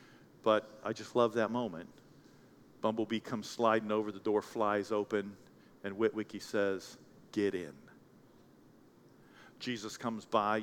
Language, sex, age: English, male, 50-69